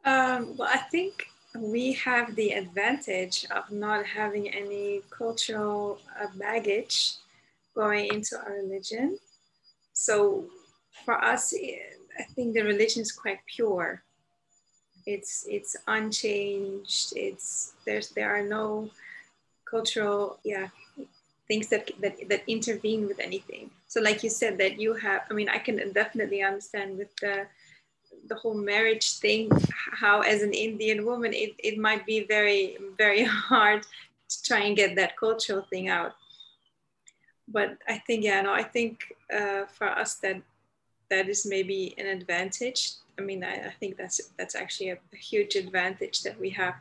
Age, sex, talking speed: 30-49, female, 145 wpm